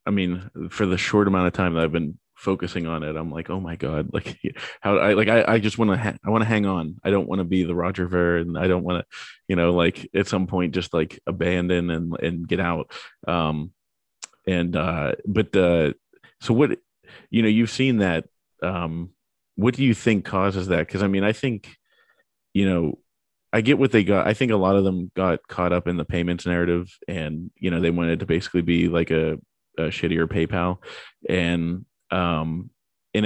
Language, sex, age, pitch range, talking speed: English, male, 30-49, 85-100 Hz, 215 wpm